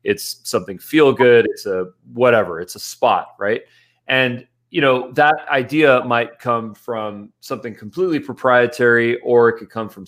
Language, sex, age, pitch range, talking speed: English, male, 30-49, 110-135 Hz, 160 wpm